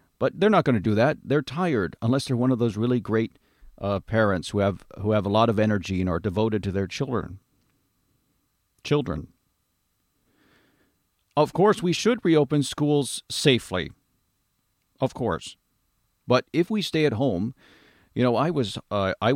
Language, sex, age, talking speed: English, male, 50-69, 165 wpm